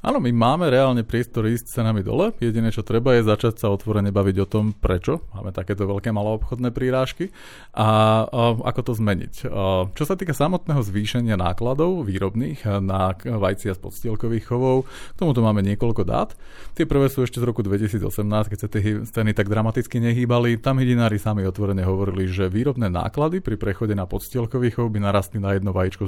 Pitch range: 100-125 Hz